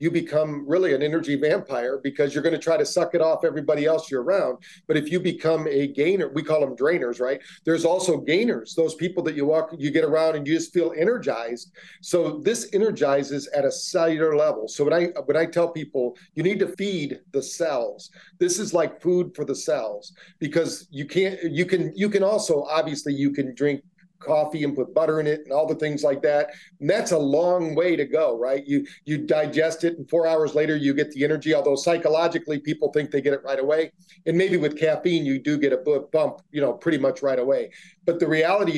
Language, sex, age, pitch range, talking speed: English, male, 40-59, 145-175 Hz, 225 wpm